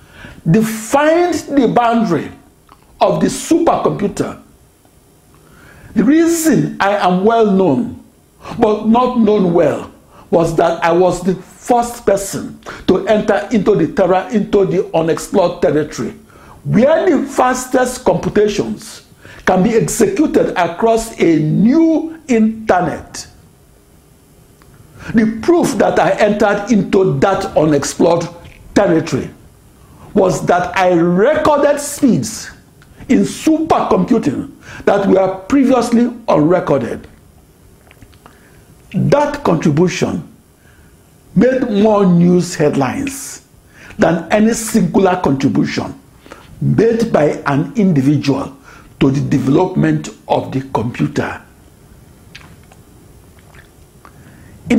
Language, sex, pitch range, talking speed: English, male, 175-255 Hz, 90 wpm